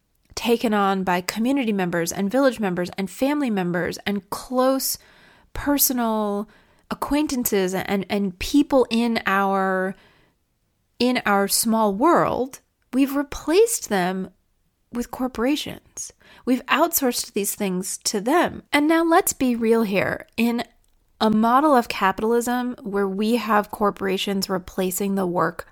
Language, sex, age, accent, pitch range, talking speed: English, female, 30-49, American, 190-250 Hz, 125 wpm